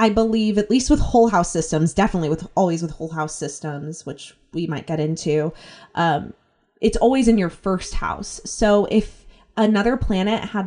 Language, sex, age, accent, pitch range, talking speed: English, female, 20-39, American, 165-220 Hz, 180 wpm